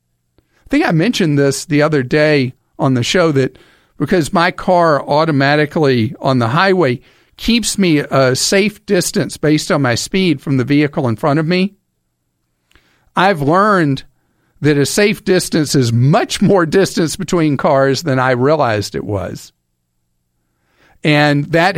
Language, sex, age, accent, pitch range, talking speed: English, male, 50-69, American, 130-175 Hz, 150 wpm